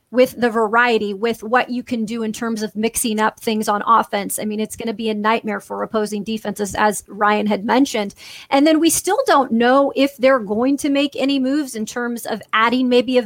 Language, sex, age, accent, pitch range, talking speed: English, female, 30-49, American, 220-250 Hz, 225 wpm